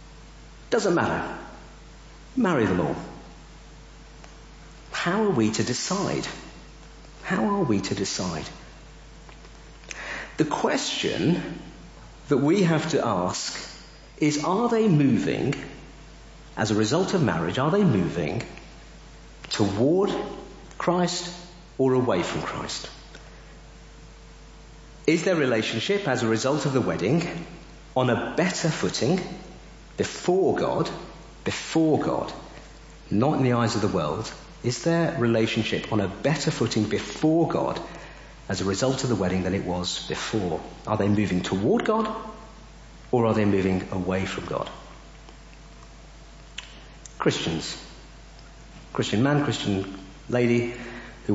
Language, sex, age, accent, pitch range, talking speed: English, male, 50-69, British, 105-155 Hz, 120 wpm